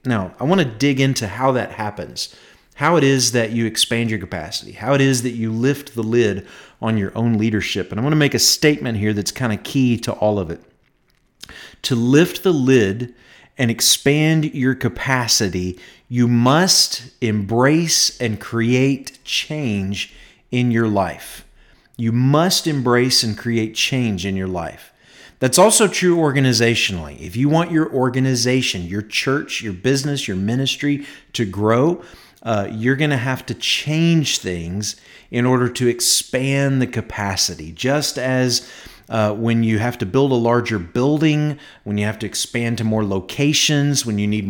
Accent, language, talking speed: American, English, 165 wpm